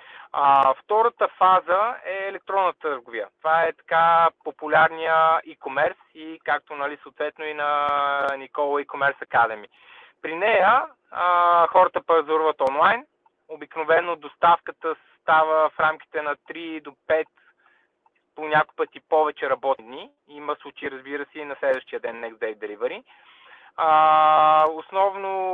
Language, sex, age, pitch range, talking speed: Bulgarian, male, 20-39, 145-175 Hz, 120 wpm